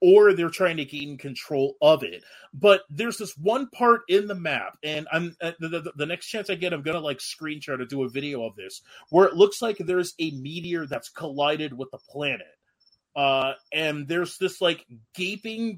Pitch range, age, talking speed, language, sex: 130-180 Hz, 30-49, 200 wpm, English, male